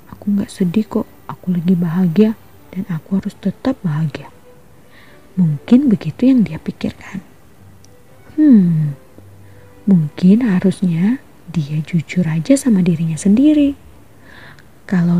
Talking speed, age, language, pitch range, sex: 105 wpm, 20-39, Indonesian, 165-225 Hz, female